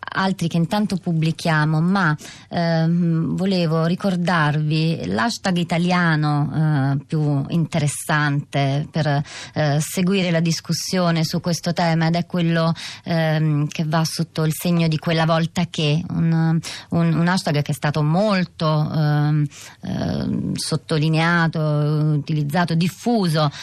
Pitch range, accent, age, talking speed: 155-180 Hz, native, 30-49, 120 wpm